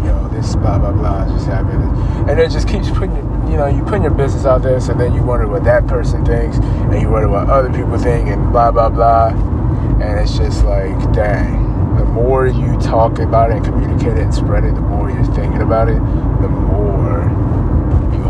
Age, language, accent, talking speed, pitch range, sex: 20-39, English, American, 220 wpm, 80-115 Hz, male